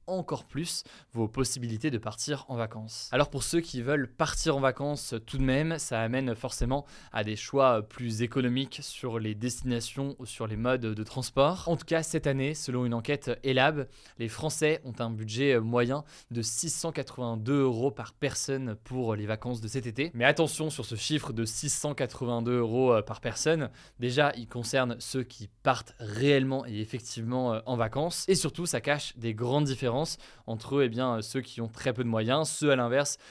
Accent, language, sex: French, French, male